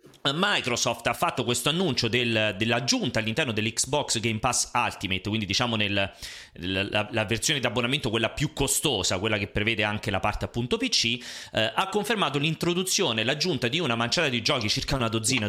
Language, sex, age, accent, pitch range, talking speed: Italian, male, 30-49, native, 115-165 Hz, 170 wpm